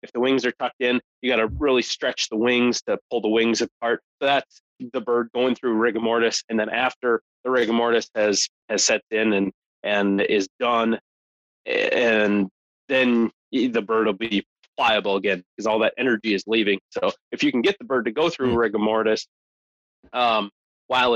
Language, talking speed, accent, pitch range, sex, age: English, 195 wpm, American, 105-130 Hz, male, 20-39